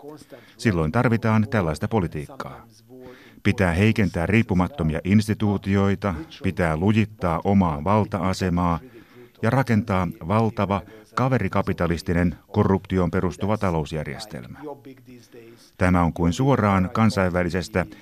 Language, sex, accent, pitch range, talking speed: Finnish, male, native, 90-115 Hz, 80 wpm